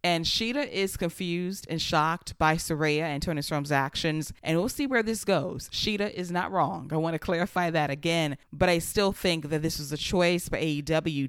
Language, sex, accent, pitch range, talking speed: English, female, American, 150-175 Hz, 205 wpm